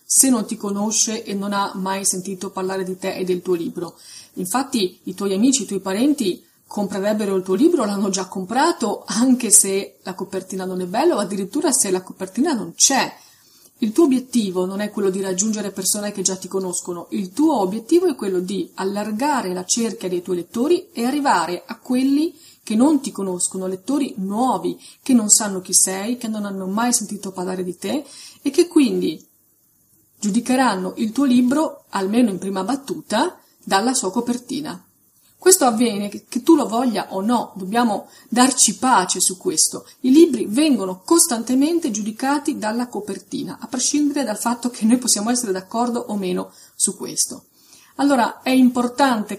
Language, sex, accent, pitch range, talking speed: Italian, female, native, 190-260 Hz, 175 wpm